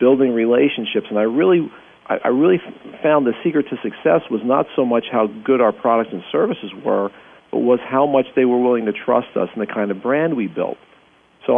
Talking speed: 210 wpm